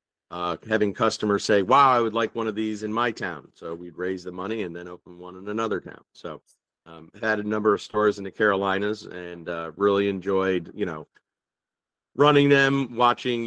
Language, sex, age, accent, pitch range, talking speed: English, male, 40-59, American, 90-105 Hz, 200 wpm